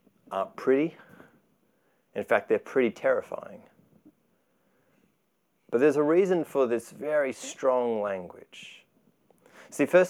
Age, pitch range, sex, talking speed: 30-49, 115-170 Hz, male, 105 wpm